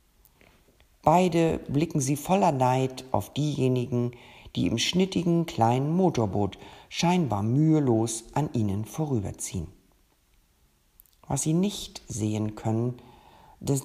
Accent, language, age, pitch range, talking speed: German, German, 50-69, 110-160 Hz, 100 wpm